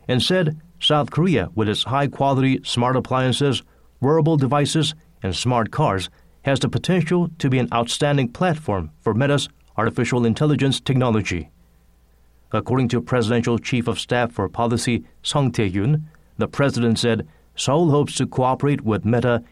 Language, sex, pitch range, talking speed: English, male, 110-140 Hz, 140 wpm